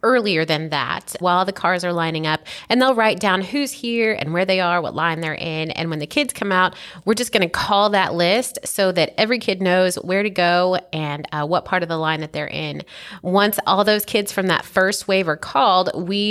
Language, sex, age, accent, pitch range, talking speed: English, female, 30-49, American, 160-205 Hz, 240 wpm